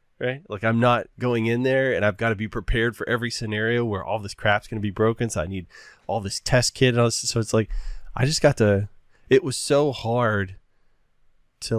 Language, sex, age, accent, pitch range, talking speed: English, male, 20-39, American, 100-120 Hz, 235 wpm